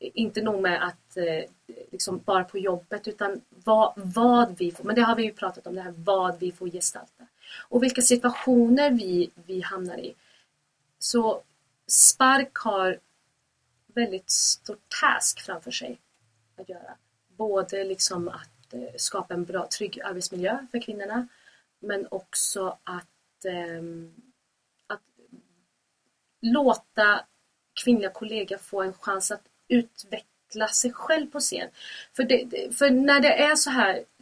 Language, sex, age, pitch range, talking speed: English, female, 30-49, 185-240 Hz, 135 wpm